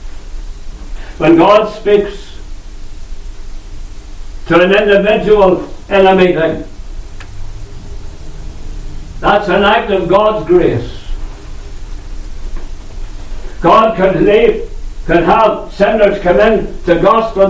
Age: 60-79